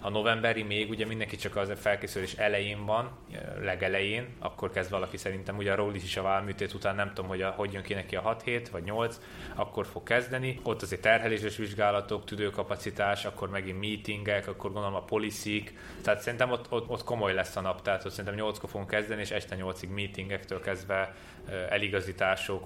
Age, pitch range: 20-39, 95-105 Hz